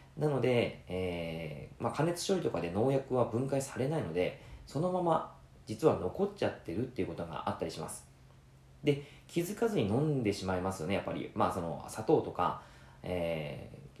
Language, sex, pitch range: Japanese, male, 90-130 Hz